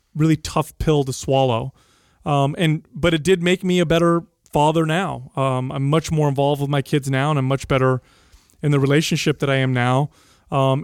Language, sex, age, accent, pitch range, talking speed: English, male, 30-49, American, 140-170 Hz, 205 wpm